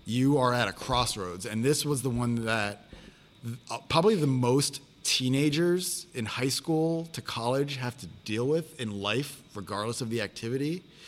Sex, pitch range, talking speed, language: male, 110-140 Hz, 160 wpm, English